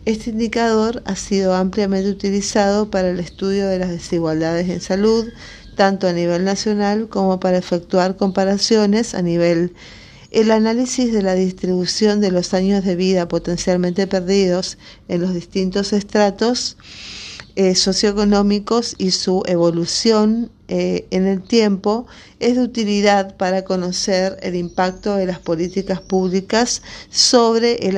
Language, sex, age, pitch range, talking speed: Spanish, female, 50-69, 180-215 Hz, 135 wpm